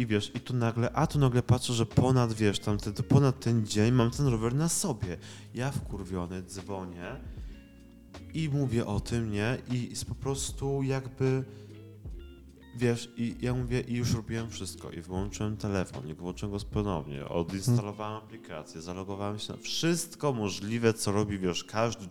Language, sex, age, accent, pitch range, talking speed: Polish, male, 20-39, native, 100-140 Hz, 165 wpm